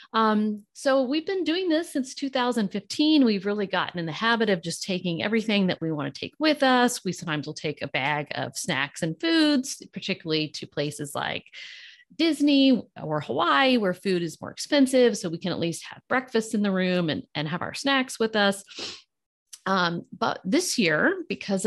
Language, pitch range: English, 170-255 Hz